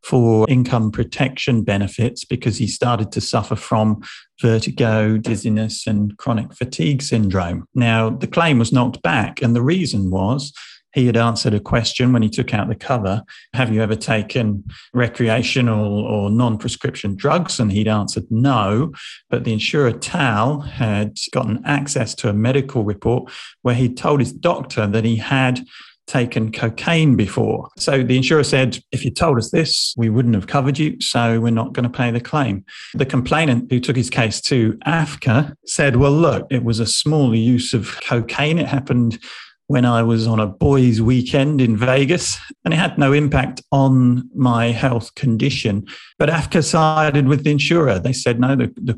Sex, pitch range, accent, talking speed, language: male, 115-135 Hz, British, 175 wpm, English